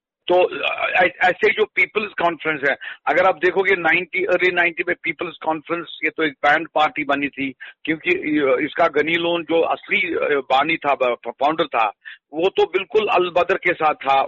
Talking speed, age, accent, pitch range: 165 wpm, 50-69, native, 140-200 Hz